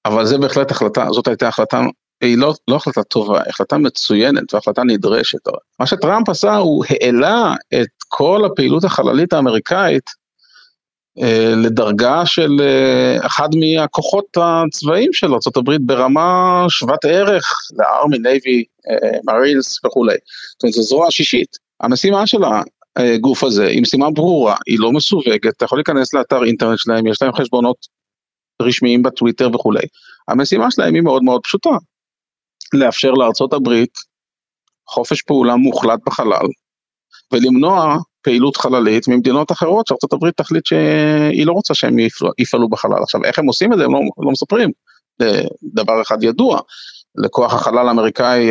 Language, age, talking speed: Hebrew, 40-59, 140 wpm